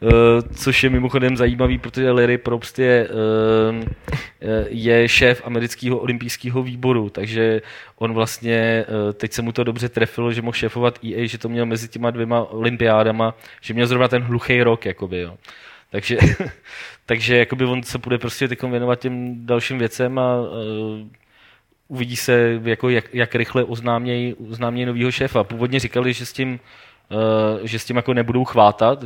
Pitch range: 110-120 Hz